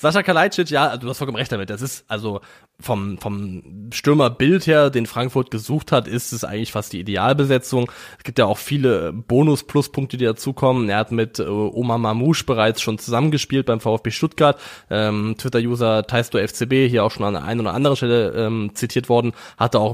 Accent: German